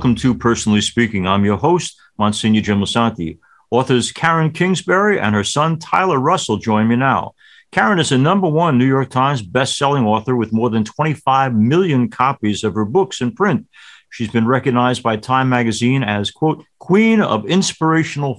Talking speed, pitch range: 170 wpm, 115-160 Hz